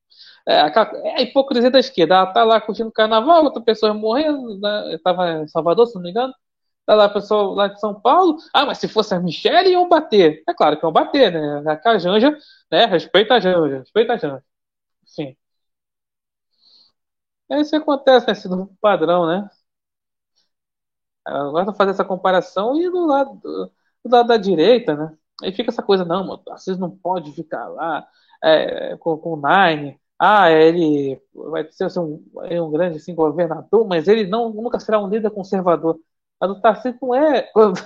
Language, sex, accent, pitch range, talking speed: Portuguese, male, Brazilian, 170-240 Hz, 180 wpm